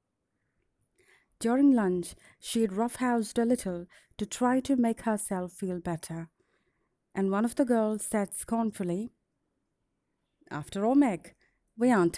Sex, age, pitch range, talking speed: female, 30-49, 185-245 Hz, 130 wpm